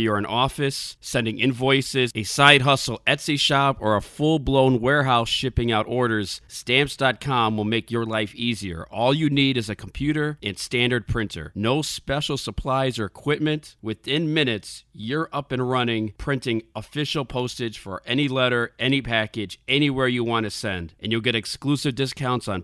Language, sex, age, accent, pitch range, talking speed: English, male, 40-59, American, 110-140 Hz, 165 wpm